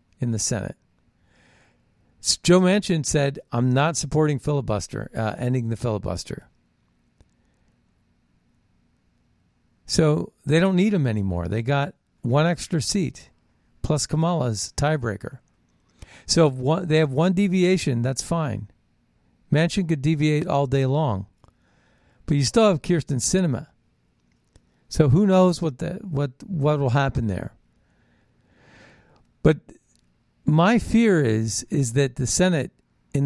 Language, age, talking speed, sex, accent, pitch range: English, 50-69, 120 wpm, male, American, 115-160 Hz